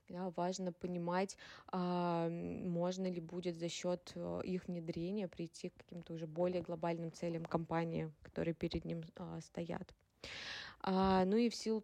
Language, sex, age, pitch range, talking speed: Russian, female, 20-39, 170-185 Hz, 125 wpm